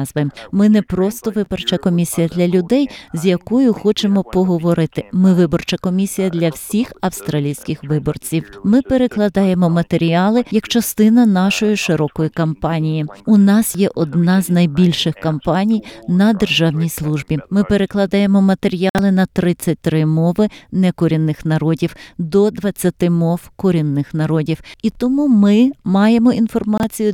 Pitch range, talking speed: 160-215 Hz, 120 wpm